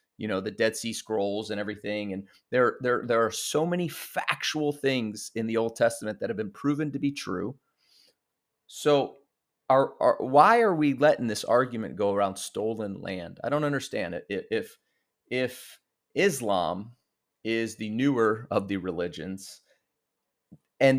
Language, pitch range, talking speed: English, 110-150 Hz, 155 wpm